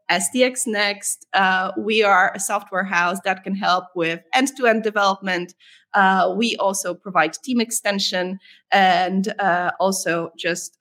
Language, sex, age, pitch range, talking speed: English, female, 20-39, 180-220 Hz, 135 wpm